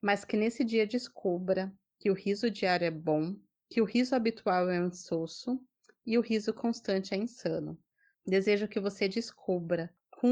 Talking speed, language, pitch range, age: 170 wpm, Portuguese, 185-230 Hz, 30-49